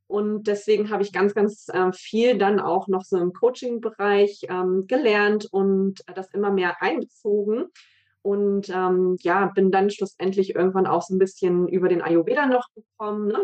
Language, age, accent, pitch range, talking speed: German, 20-39, German, 185-220 Hz, 175 wpm